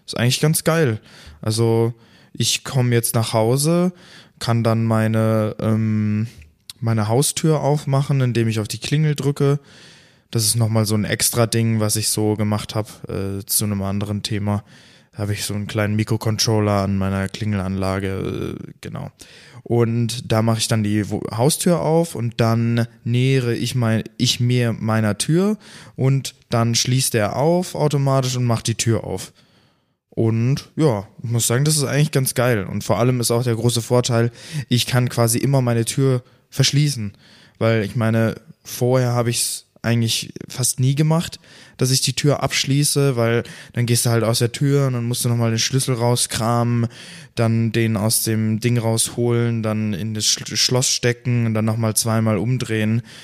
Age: 20-39